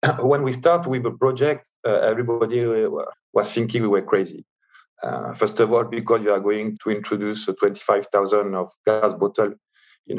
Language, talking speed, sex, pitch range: English, 170 wpm, male, 95-115 Hz